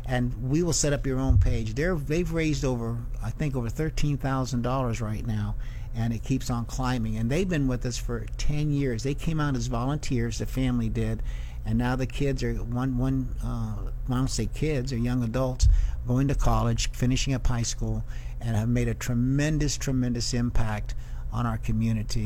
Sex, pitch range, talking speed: male, 120-145 Hz, 195 wpm